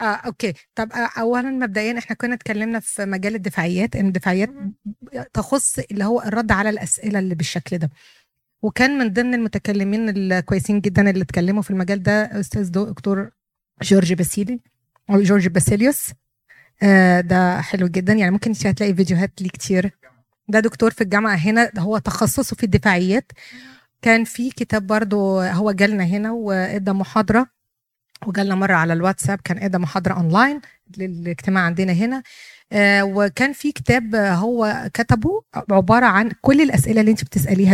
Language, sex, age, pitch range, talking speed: Arabic, female, 20-39, 190-225 Hz, 150 wpm